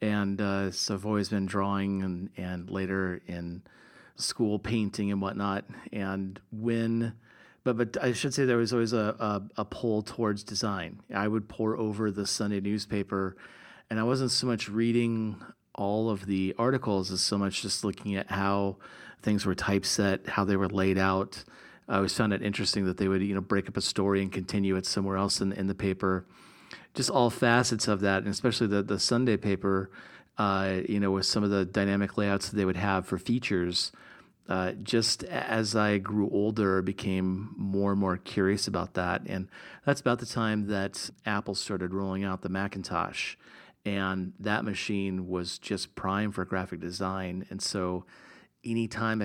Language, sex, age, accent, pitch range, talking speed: English, male, 40-59, American, 95-110 Hz, 180 wpm